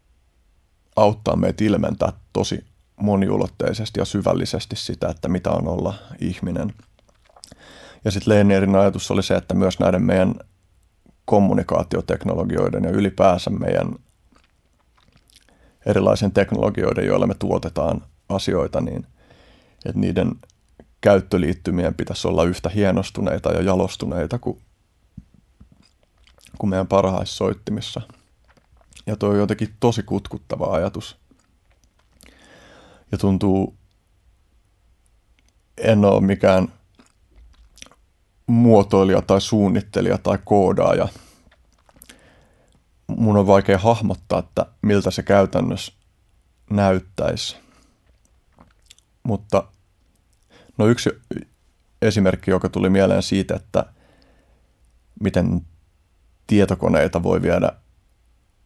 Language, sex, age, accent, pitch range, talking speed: Finnish, male, 30-49, native, 85-100 Hz, 90 wpm